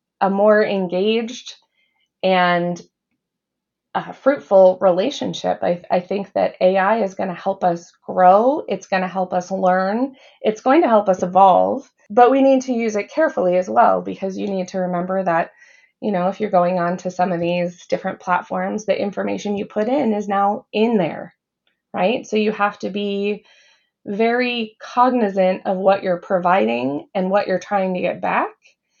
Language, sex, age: English, female, 20-39